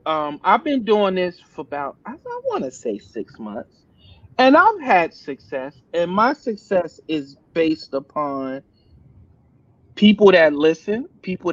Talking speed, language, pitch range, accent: 140 wpm, English, 140-180 Hz, American